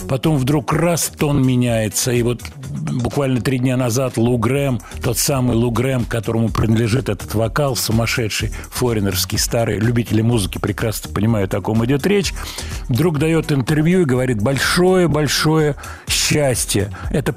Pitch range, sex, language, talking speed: 115-150 Hz, male, Russian, 140 wpm